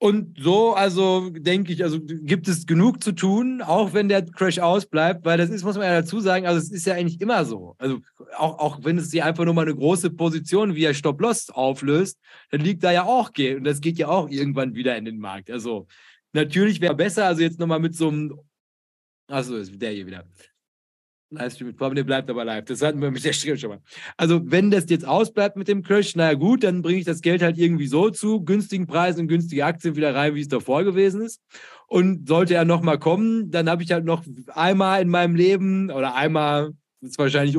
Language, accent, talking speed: German, German, 225 wpm